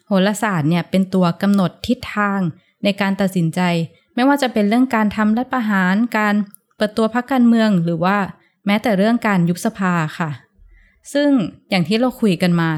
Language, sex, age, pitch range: Thai, female, 20-39, 175-225 Hz